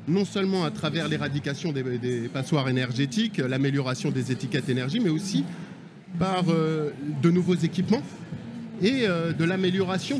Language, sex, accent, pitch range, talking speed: French, male, French, 155-195 Hz, 140 wpm